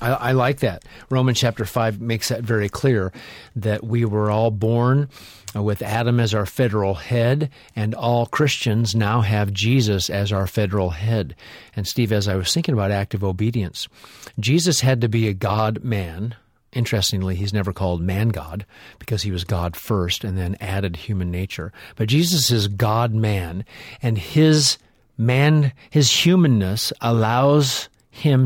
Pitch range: 105-125 Hz